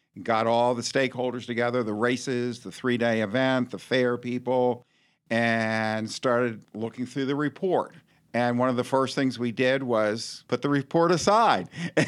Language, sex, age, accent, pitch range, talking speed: English, male, 50-69, American, 110-135 Hz, 160 wpm